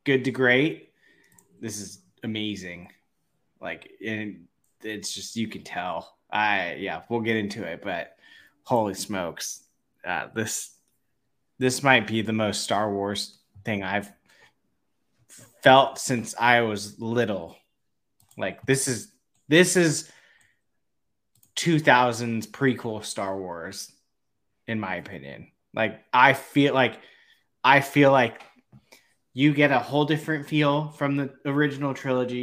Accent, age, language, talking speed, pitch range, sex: American, 20-39, English, 130 wpm, 110-135 Hz, male